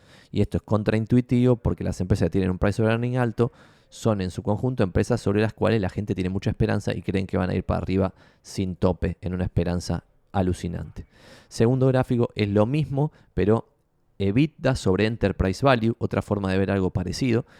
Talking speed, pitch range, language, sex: 195 wpm, 95-110 Hz, Spanish, male